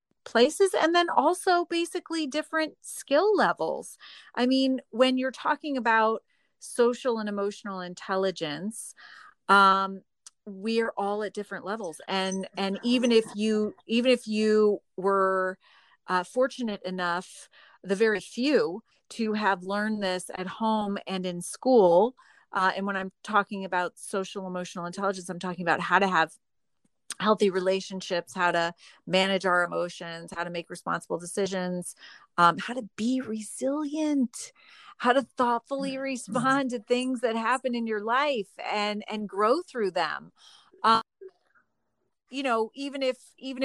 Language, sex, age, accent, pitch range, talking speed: English, female, 30-49, American, 190-255 Hz, 140 wpm